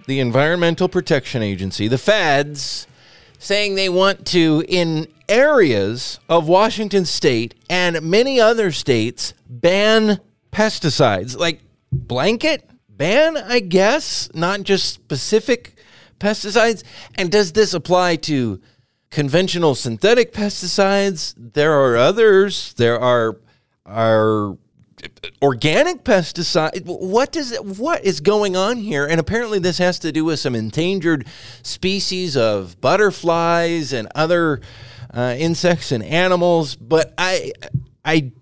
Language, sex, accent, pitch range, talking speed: English, male, American, 130-180 Hz, 115 wpm